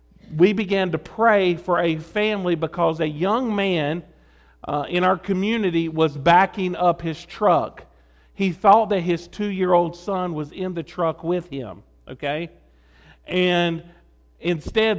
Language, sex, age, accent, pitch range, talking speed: English, male, 50-69, American, 155-180 Hz, 140 wpm